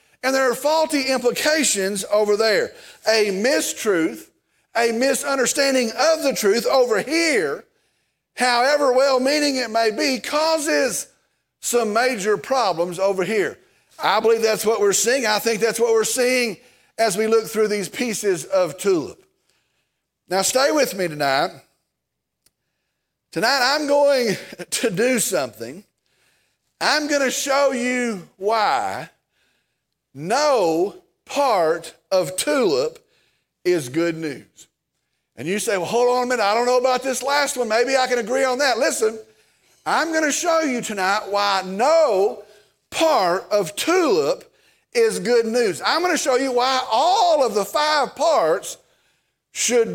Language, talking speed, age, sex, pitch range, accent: English, 140 wpm, 40-59, male, 205-285 Hz, American